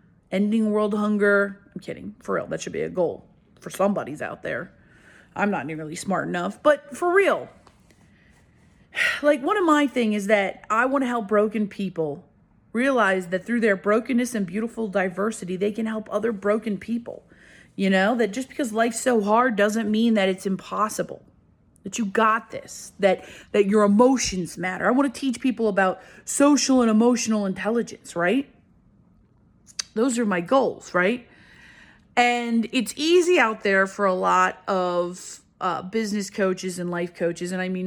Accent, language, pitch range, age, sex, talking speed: American, English, 195-245 Hz, 30-49, female, 165 wpm